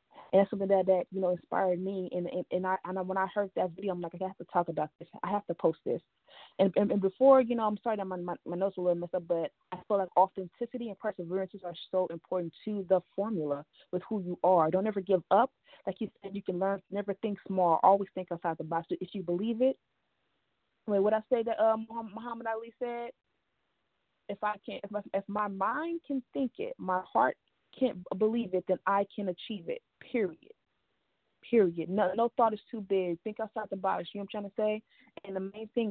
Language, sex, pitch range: English, female, 185-210 Hz